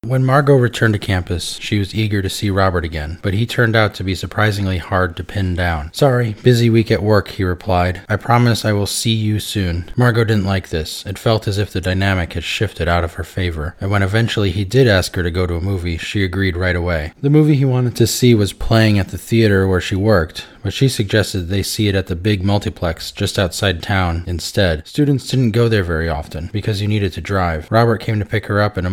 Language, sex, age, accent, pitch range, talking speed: English, male, 20-39, American, 90-110 Hz, 240 wpm